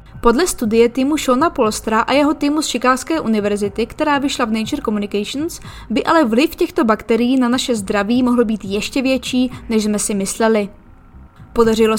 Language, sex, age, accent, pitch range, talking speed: Czech, female, 20-39, native, 220-285 Hz, 165 wpm